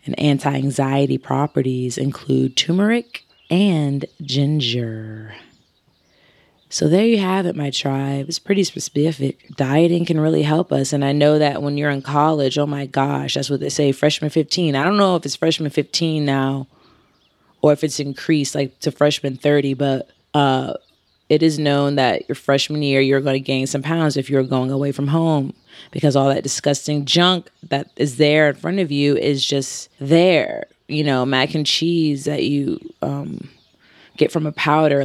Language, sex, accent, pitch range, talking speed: English, female, American, 140-160 Hz, 175 wpm